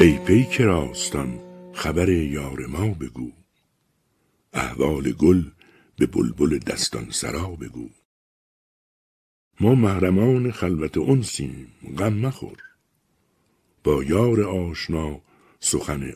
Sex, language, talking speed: male, Persian, 95 wpm